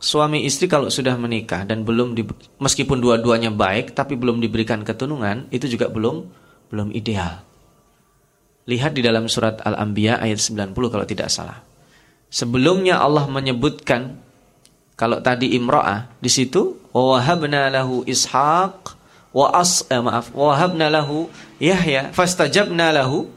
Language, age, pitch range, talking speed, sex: Indonesian, 30-49, 115-150 Hz, 120 wpm, male